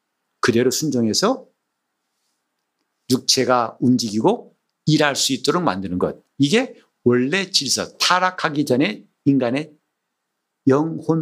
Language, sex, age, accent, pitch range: Korean, male, 50-69, native, 135-210 Hz